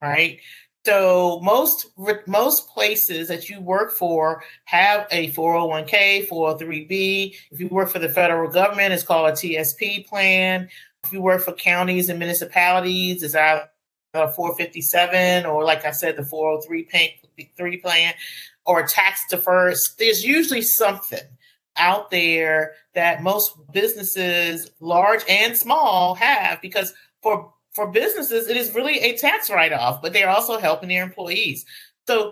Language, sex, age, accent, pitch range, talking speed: English, male, 40-59, American, 165-205 Hz, 140 wpm